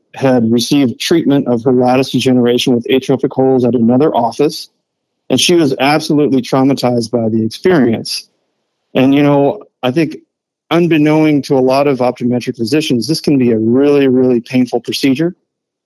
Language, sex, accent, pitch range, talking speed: English, male, American, 120-140 Hz, 155 wpm